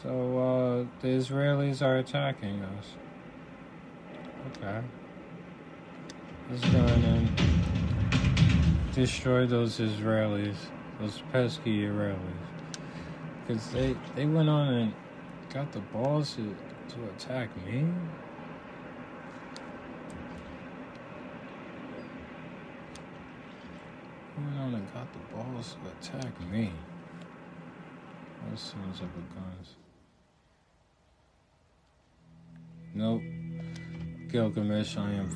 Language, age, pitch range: English, 50-69, 100-155 Hz